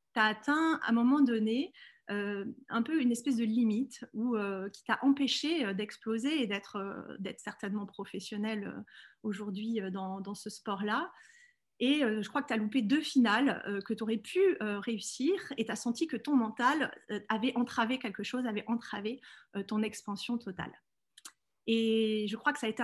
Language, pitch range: French, 215-265 Hz